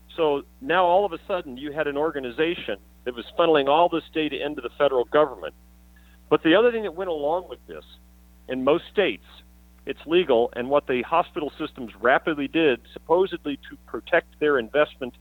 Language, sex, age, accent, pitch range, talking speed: English, male, 50-69, American, 100-160 Hz, 180 wpm